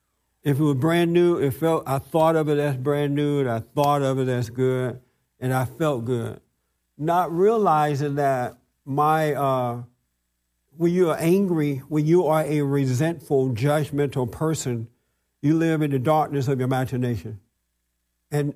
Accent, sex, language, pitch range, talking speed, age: American, male, English, 130-160 Hz, 160 wpm, 60-79